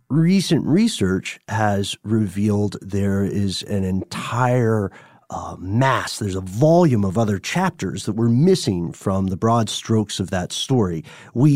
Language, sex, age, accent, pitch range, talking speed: English, male, 40-59, American, 100-130 Hz, 140 wpm